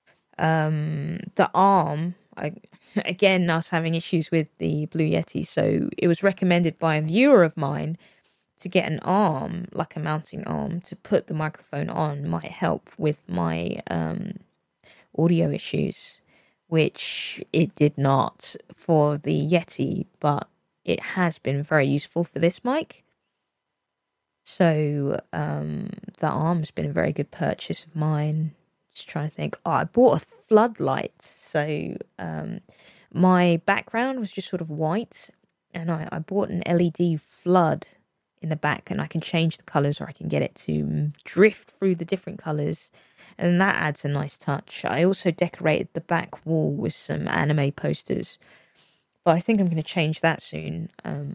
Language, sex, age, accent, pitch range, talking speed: English, female, 20-39, British, 150-180 Hz, 165 wpm